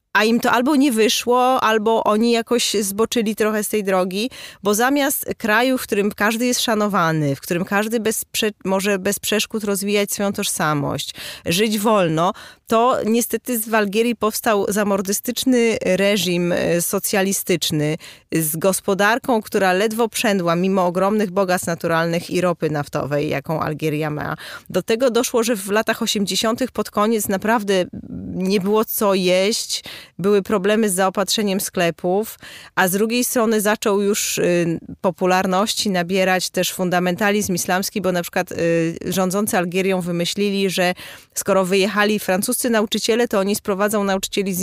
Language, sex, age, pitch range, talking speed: Polish, female, 20-39, 180-220 Hz, 135 wpm